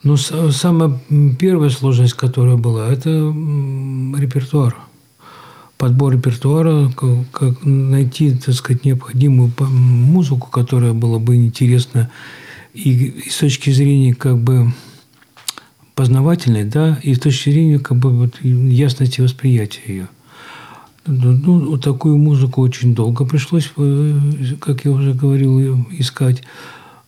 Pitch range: 125-140 Hz